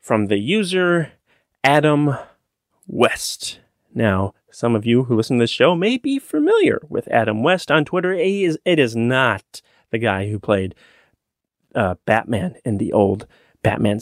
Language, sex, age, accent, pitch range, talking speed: English, male, 30-49, American, 110-160 Hz, 160 wpm